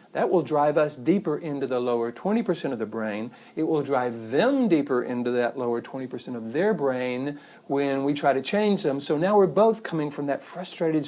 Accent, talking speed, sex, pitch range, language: American, 205 wpm, male, 125-180 Hz, English